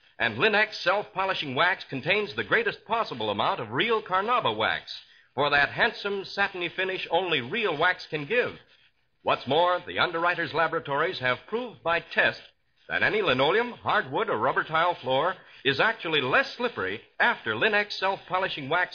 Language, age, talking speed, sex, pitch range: English, 60-79, 150 wpm, male, 120-200 Hz